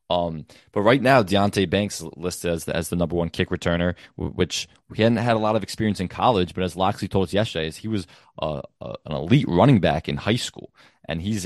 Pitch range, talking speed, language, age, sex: 85-100 Hz, 225 wpm, English, 20-39, male